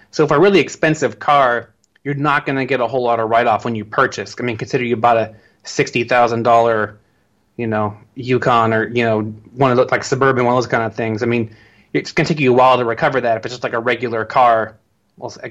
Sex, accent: male, American